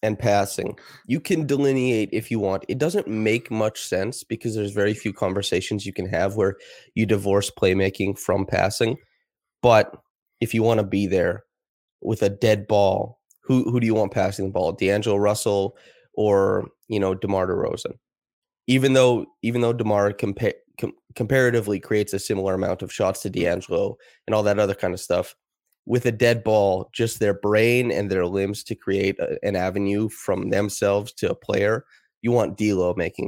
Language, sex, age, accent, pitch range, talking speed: English, male, 20-39, American, 100-120 Hz, 175 wpm